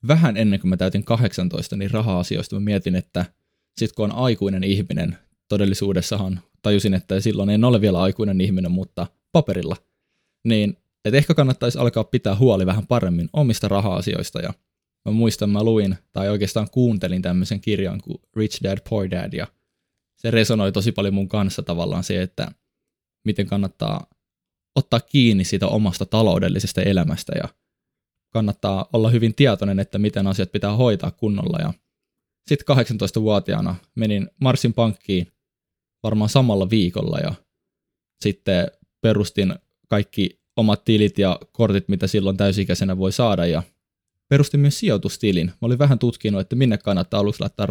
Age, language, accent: 20-39, Finnish, native